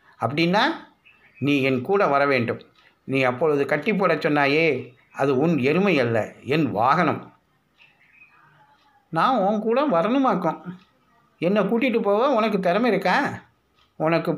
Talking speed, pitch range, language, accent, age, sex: 115 wpm, 130-175 Hz, Tamil, native, 60-79, male